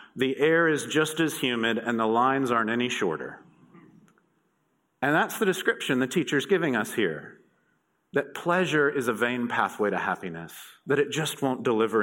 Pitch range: 140-180 Hz